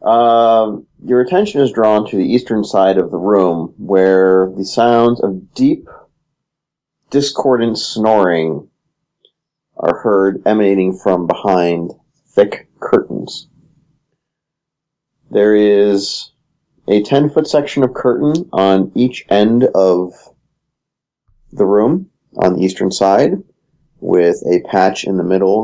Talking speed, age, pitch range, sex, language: 115 wpm, 40-59, 90-115 Hz, male, English